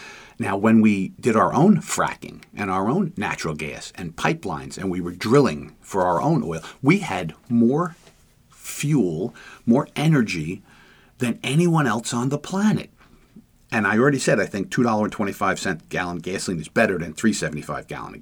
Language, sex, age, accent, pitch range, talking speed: English, male, 50-69, American, 100-135 Hz, 160 wpm